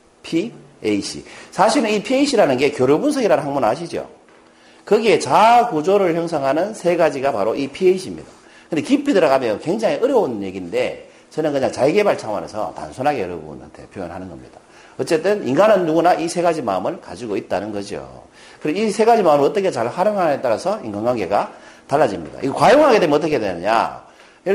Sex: male